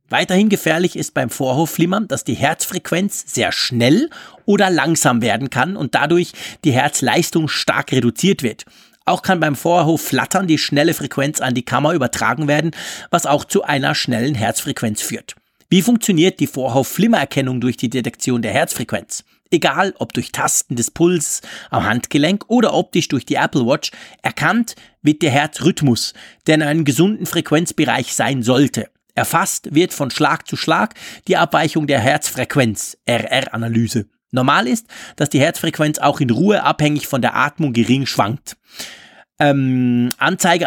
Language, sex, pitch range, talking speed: German, male, 130-180 Hz, 150 wpm